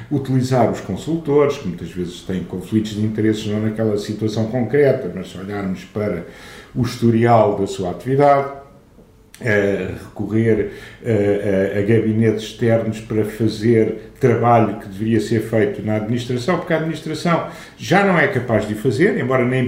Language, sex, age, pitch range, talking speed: Portuguese, male, 50-69, 110-140 Hz, 145 wpm